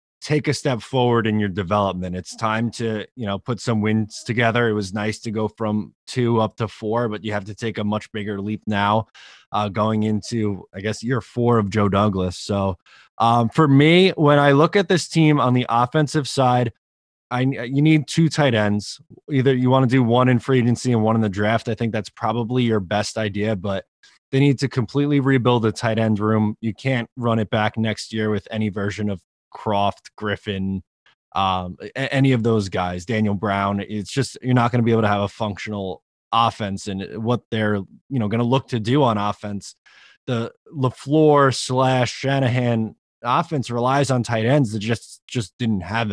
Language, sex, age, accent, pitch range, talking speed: English, male, 20-39, American, 105-125 Hz, 205 wpm